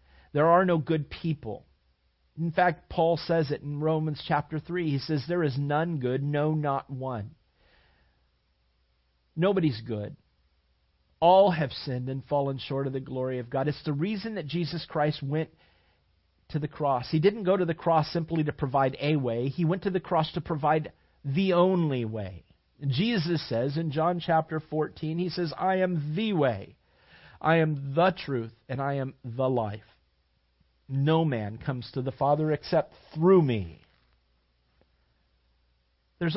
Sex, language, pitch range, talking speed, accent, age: male, English, 100-160 Hz, 160 wpm, American, 40-59